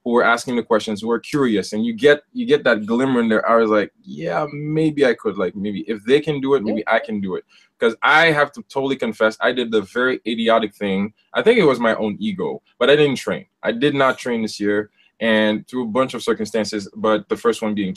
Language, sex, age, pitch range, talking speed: English, male, 20-39, 100-130 Hz, 250 wpm